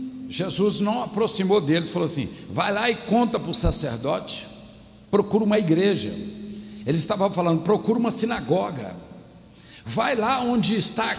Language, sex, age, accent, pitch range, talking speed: Portuguese, male, 60-79, Brazilian, 190-235 Hz, 145 wpm